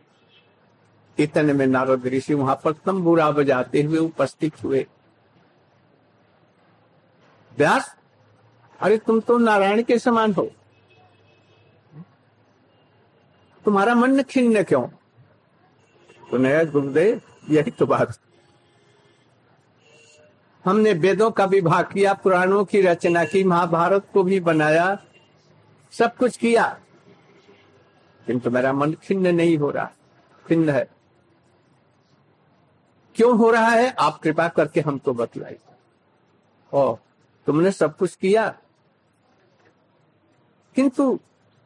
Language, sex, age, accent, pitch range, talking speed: Hindi, male, 60-79, native, 145-220 Hz, 95 wpm